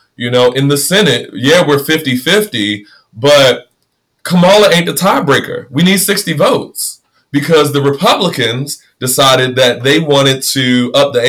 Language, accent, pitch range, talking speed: English, American, 115-140 Hz, 145 wpm